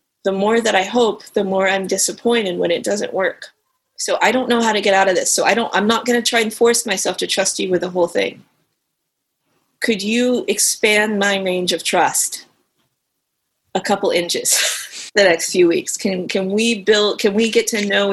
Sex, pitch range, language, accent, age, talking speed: female, 185-230 Hz, English, American, 30-49, 210 wpm